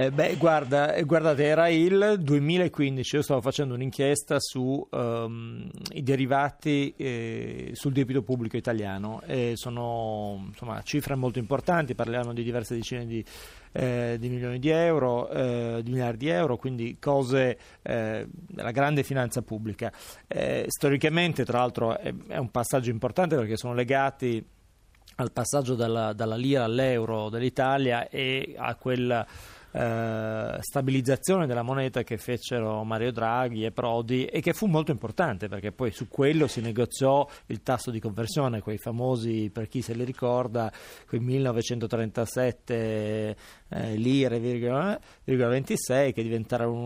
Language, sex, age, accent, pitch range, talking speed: Italian, male, 30-49, native, 115-140 Hz, 140 wpm